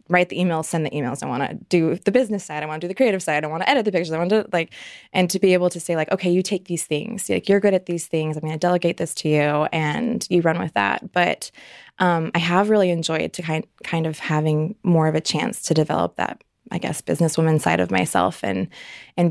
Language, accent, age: English, American, 20-39